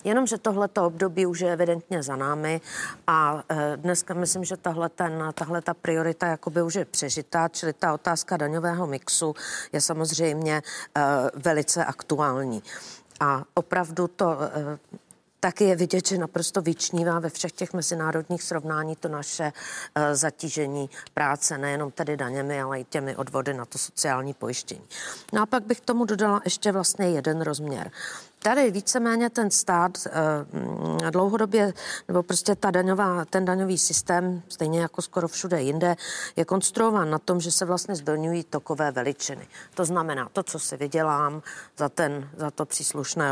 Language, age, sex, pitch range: Czech, 40-59, female, 150-185 Hz